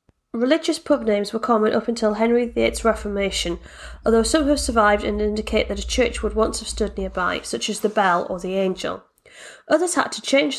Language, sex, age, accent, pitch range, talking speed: English, female, 30-49, British, 210-245 Hz, 200 wpm